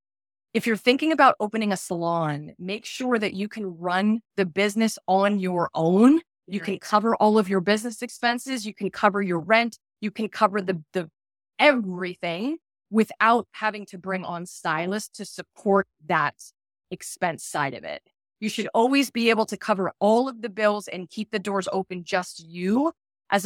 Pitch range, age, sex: 185-230 Hz, 20-39, female